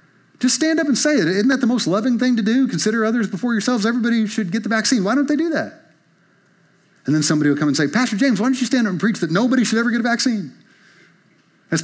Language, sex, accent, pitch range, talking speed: English, male, American, 150-245 Hz, 265 wpm